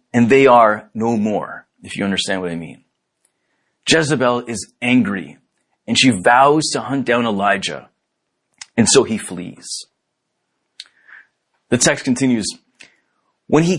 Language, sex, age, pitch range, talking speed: English, male, 30-49, 125-205 Hz, 130 wpm